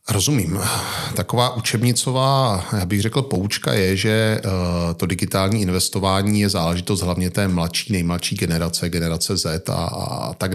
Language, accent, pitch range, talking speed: Czech, native, 90-105 Hz, 150 wpm